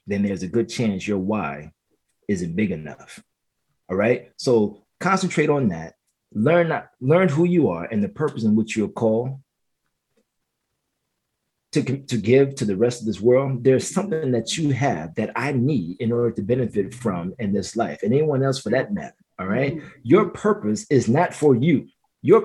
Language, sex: English, male